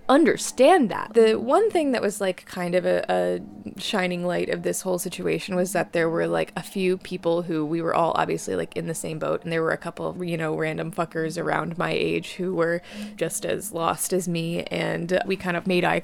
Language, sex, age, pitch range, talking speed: English, female, 20-39, 175-215 Hz, 230 wpm